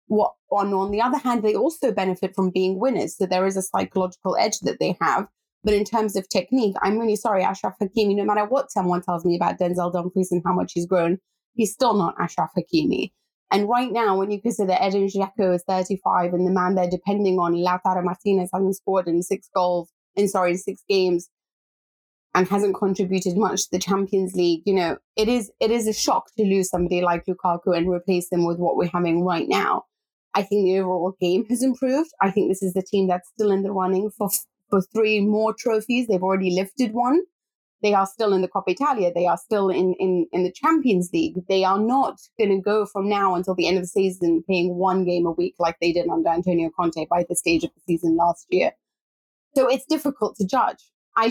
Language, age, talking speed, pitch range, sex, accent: English, 20-39, 225 wpm, 180-215 Hz, female, British